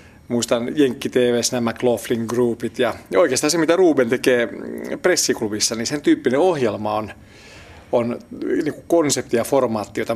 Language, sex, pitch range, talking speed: Finnish, male, 115-150 Hz, 150 wpm